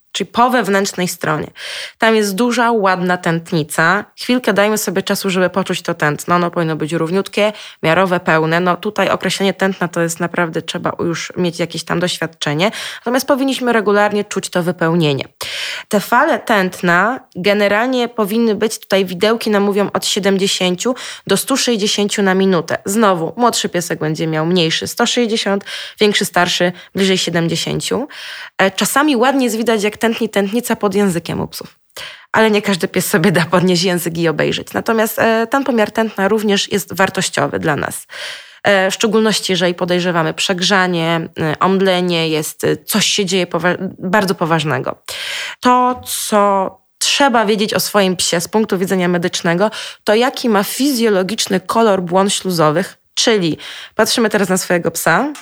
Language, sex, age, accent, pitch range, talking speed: Polish, female, 20-39, native, 175-220 Hz, 145 wpm